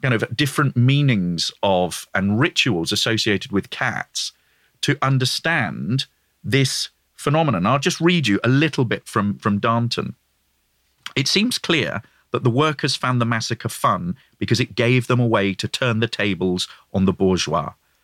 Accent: British